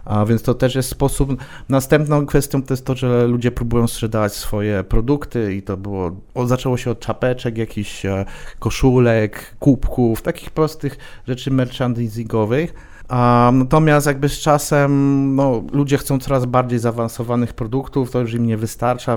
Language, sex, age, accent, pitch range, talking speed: Polish, male, 40-59, native, 115-135 Hz, 145 wpm